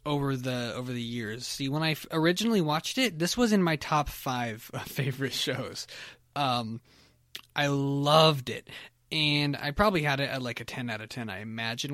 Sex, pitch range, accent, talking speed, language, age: male, 135-180 Hz, American, 185 wpm, English, 20-39